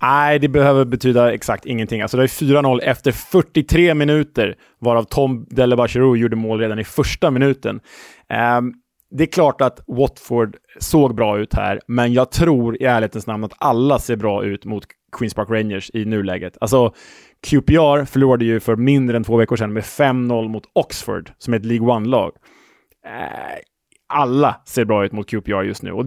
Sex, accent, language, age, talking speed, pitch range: male, Norwegian, Swedish, 20-39, 180 wpm, 110-135 Hz